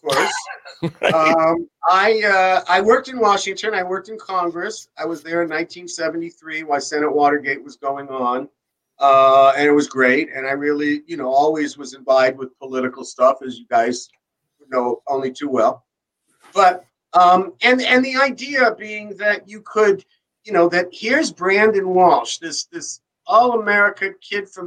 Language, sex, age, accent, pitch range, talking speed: English, male, 50-69, American, 150-200 Hz, 165 wpm